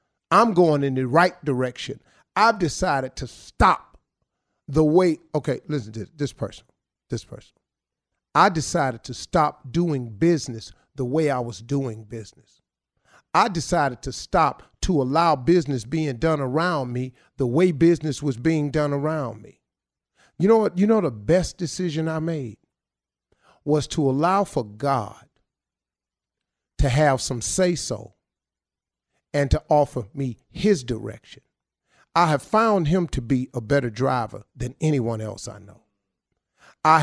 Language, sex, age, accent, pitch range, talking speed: English, male, 40-59, American, 125-170 Hz, 145 wpm